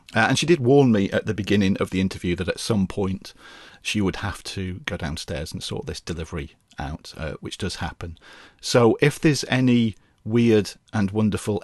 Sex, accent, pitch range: male, British, 90-115 Hz